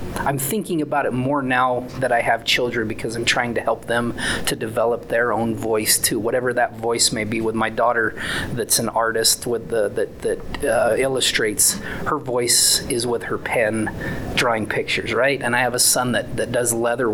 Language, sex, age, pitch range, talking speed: English, male, 30-49, 115-155 Hz, 200 wpm